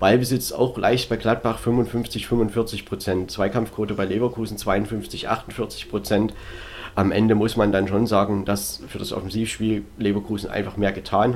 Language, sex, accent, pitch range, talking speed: German, male, German, 95-110 Hz, 135 wpm